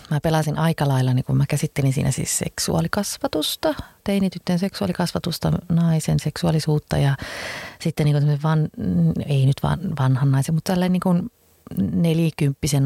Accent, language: native, Finnish